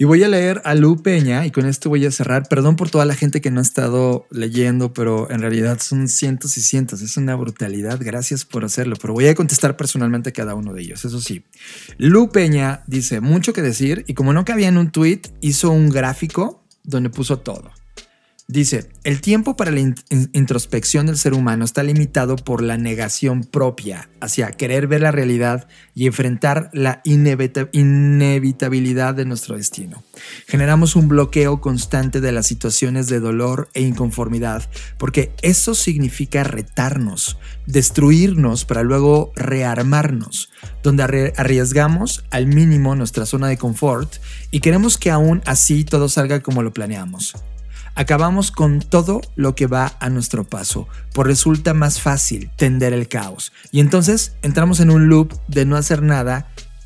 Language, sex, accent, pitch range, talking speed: Spanish, male, Mexican, 125-150 Hz, 165 wpm